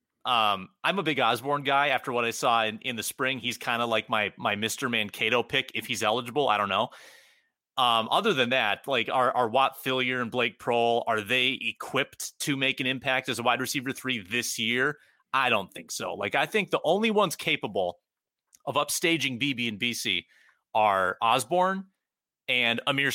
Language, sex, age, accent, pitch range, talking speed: English, male, 30-49, American, 120-155 Hz, 195 wpm